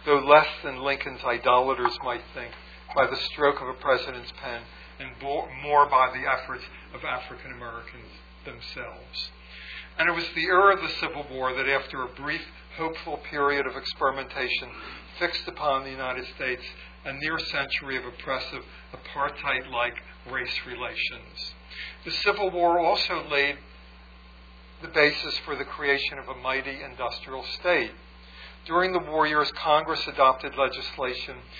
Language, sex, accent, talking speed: English, male, American, 140 wpm